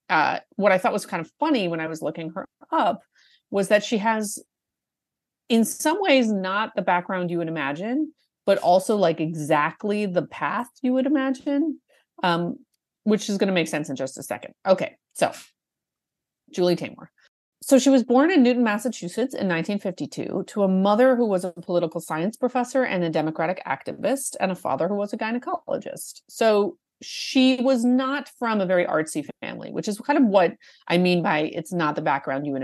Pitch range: 160-235 Hz